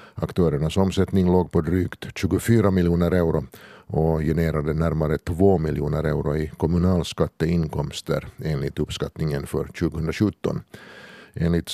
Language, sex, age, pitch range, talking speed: Swedish, male, 50-69, 80-95 Hz, 105 wpm